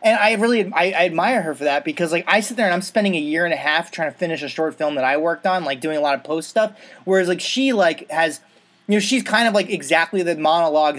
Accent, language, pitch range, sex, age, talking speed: American, English, 155-195 Hz, male, 30-49, 290 wpm